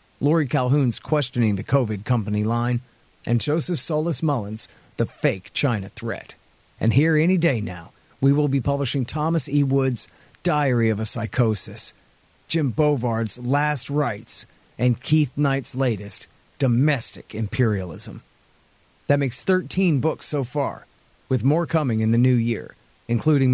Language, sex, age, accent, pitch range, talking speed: English, male, 40-59, American, 110-140 Hz, 140 wpm